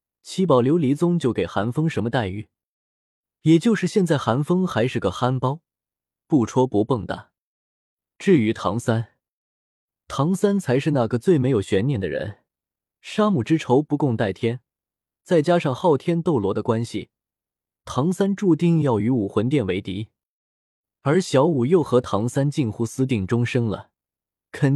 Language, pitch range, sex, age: Chinese, 110-155 Hz, male, 20-39